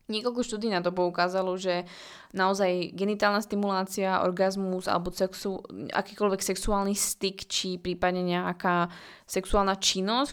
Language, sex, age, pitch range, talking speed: Slovak, female, 20-39, 175-200 Hz, 110 wpm